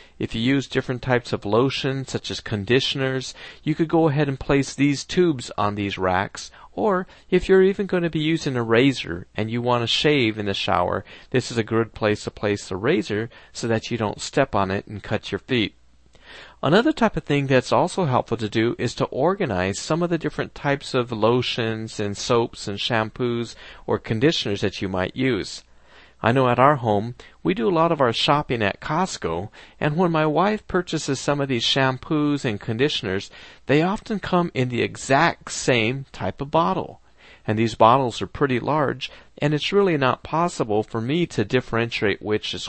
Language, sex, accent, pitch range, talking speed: English, male, American, 110-150 Hz, 195 wpm